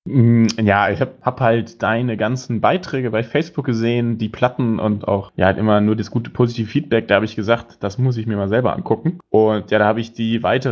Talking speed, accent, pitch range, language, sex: 225 wpm, German, 105-125 Hz, German, male